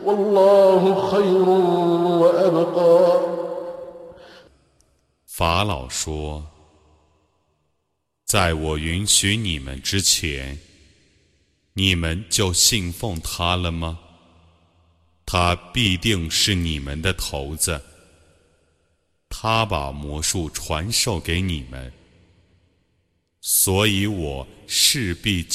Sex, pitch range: male, 80-100 Hz